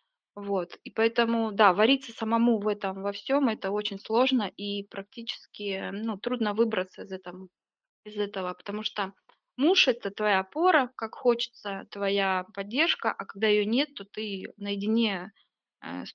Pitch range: 195-230 Hz